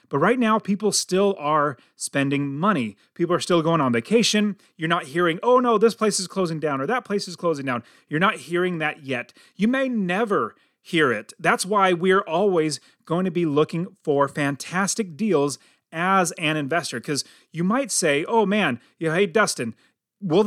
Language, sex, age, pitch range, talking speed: English, male, 30-49, 150-205 Hz, 185 wpm